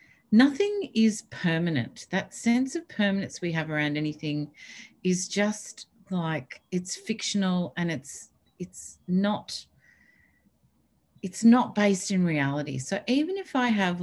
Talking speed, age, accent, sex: 130 wpm, 40-59, Australian, female